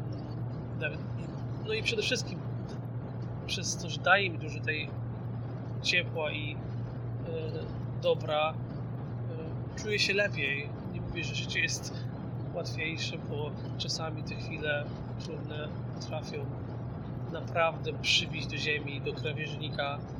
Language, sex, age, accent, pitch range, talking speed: Polish, male, 30-49, native, 120-140 Hz, 105 wpm